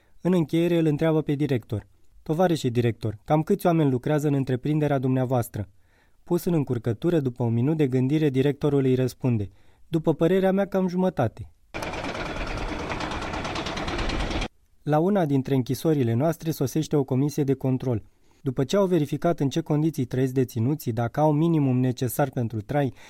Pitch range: 125-170 Hz